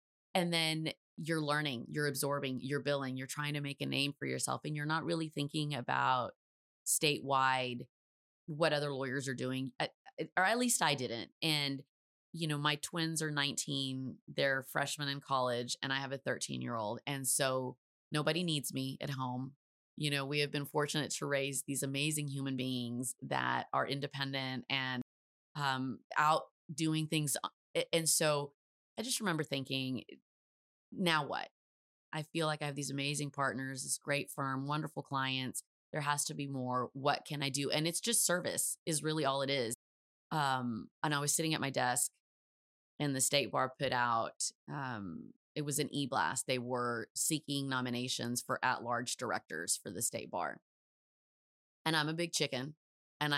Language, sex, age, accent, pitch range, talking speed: English, female, 30-49, American, 130-150 Hz, 170 wpm